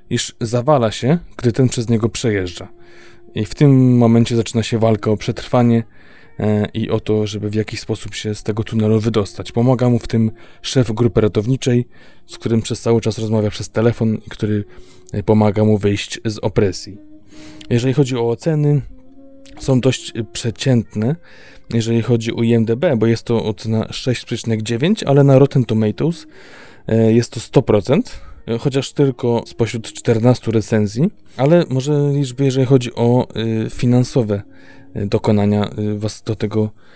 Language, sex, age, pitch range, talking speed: Polish, male, 20-39, 110-130 Hz, 150 wpm